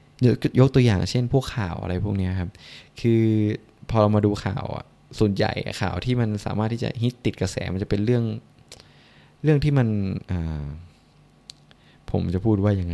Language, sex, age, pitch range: Thai, male, 20-39, 90-115 Hz